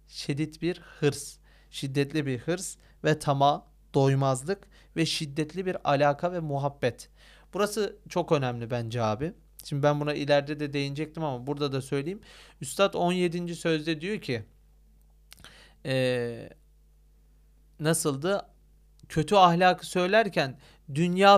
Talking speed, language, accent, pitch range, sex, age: 115 wpm, Turkish, native, 135-175 Hz, male, 40-59